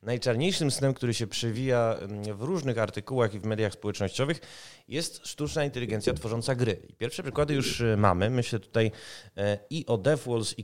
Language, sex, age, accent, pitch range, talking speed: Polish, male, 30-49, native, 105-130 Hz, 160 wpm